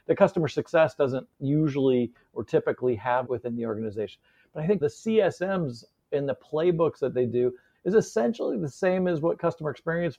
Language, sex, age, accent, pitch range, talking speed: English, male, 40-59, American, 125-150 Hz, 175 wpm